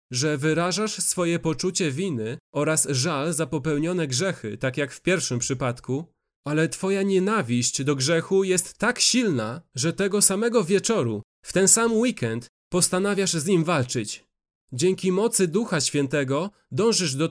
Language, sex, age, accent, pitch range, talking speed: Polish, male, 30-49, native, 130-185 Hz, 140 wpm